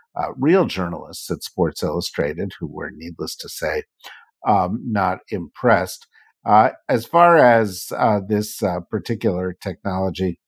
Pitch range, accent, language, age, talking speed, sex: 90-110 Hz, American, English, 50-69, 130 wpm, male